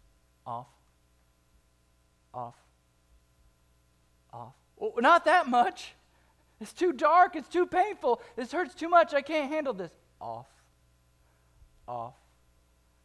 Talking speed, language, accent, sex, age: 100 wpm, English, American, male, 40-59